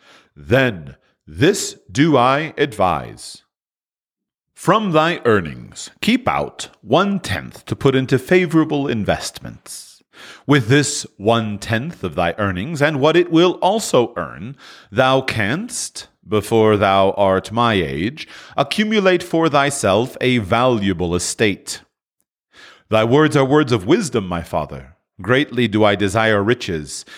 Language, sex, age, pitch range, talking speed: English, male, 40-59, 105-150 Hz, 120 wpm